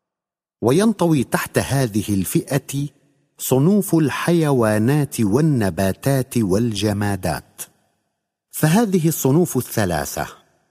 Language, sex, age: Arabic, male, 50-69